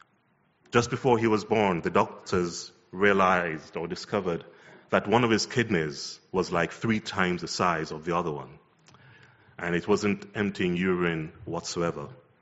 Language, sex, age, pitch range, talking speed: English, male, 30-49, 85-105 Hz, 150 wpm